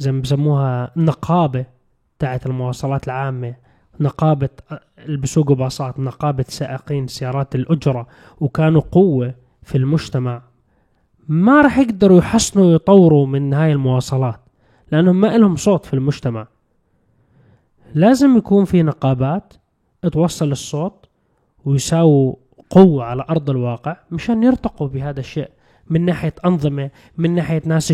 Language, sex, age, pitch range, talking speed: Arabic, male, 20-39, 135-170 Hz, 110 wpm